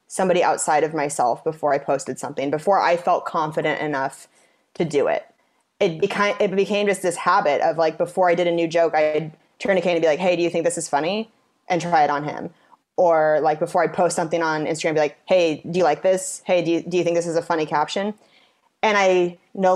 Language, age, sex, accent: English, 20-39, female, American